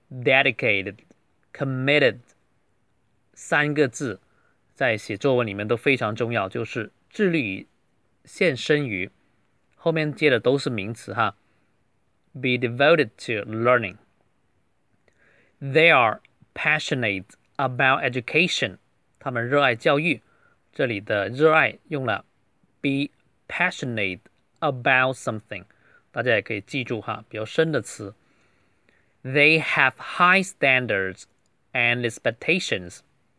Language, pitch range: Chinese, 110-145 Hz